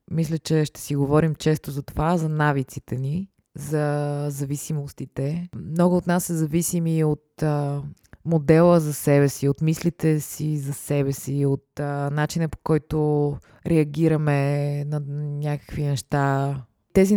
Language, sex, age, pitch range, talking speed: Bulgarian, female, 20-39, 145-170 Hz, 145 wpm